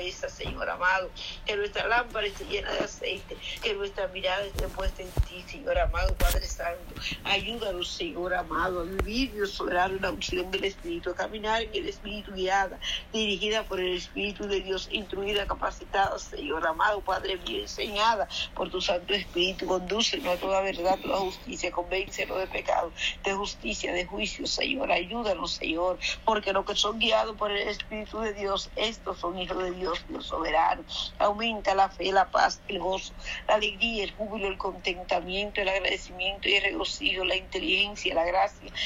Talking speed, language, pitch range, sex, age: 170 wpm, Spanish, 190-215 Hz, female, 50-69